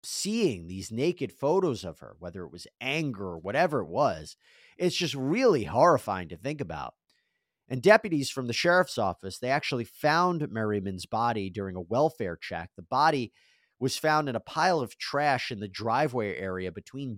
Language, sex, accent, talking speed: English, male, American, 175 wpm